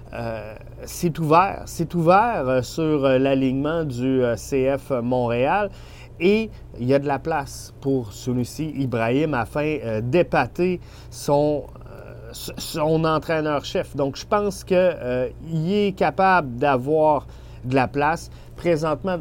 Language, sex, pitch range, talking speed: French, male, 130-160 Hz, 130 wpm